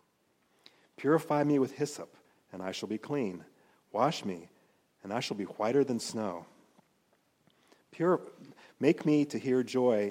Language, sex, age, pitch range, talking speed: English, male, 40-59, 105-135 Hz, 140 wpm